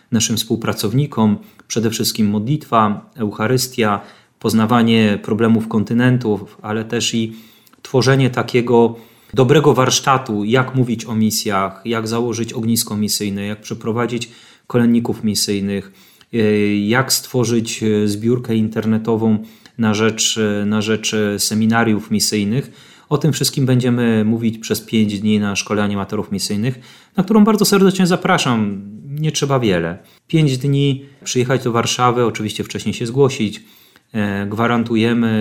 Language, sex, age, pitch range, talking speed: Polish, male, 30-49, 105-125 Hz, 115 wpm